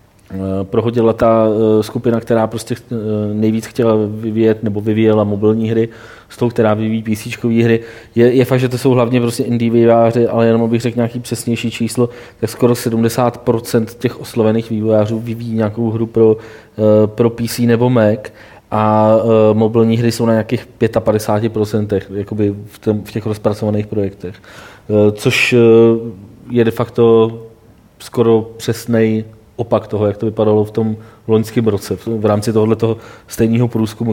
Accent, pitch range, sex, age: native, 105-115 Hz, male, 20-39